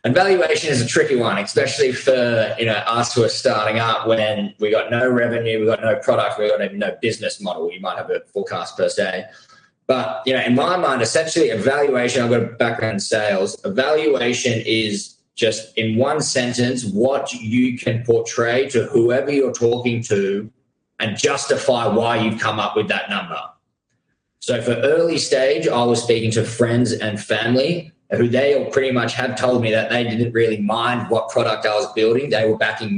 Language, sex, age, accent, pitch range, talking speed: English, male, 20-39, Australian, 110-125 Hz, 195 wpm